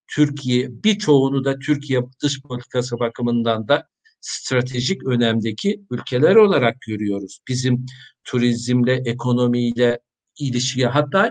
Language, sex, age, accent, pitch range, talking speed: Turkish, male, 50-69, native, 125-145 Hz, 100 wpm